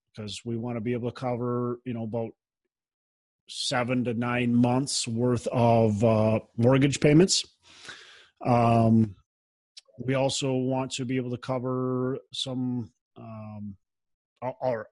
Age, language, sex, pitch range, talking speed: 30-49, English, male, 120-140 Hz, 130 wpm